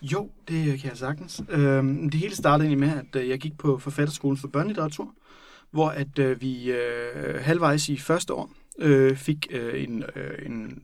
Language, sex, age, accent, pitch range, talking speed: Danish, male, 30-49, native, 135-160 Hz, 145 wpm